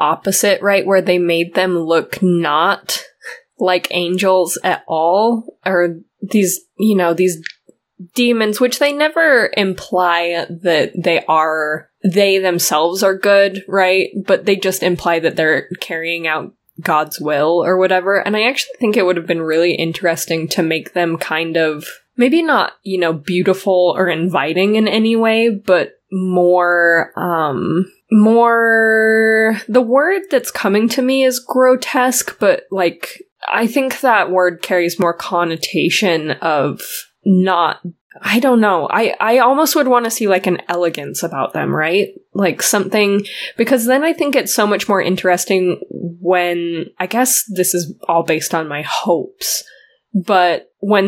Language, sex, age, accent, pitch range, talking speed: English, female, 10-29, American, 175-220 Hz, 150 wpm